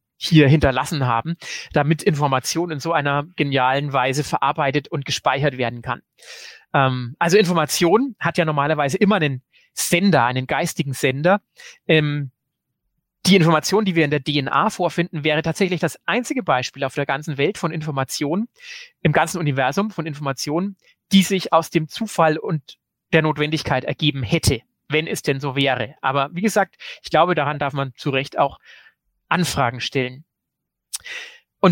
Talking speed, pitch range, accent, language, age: 155 wpm, 145-180 Hz, German, German, 30-49